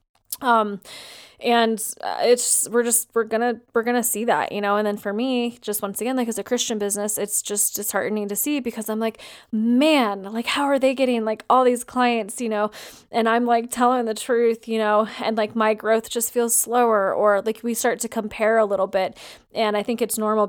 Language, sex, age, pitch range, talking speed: English, female, 20-39, 205-230 Hz, 215 wpm